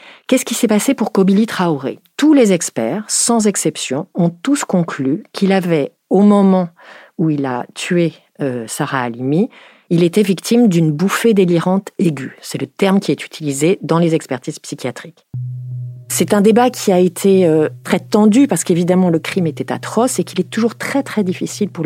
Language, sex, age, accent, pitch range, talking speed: French, female, 40-59, French, 145-195 Hz, 180 wpm